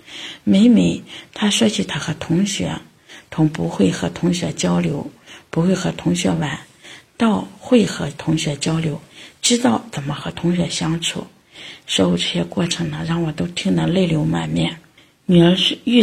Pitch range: 155-190 Hz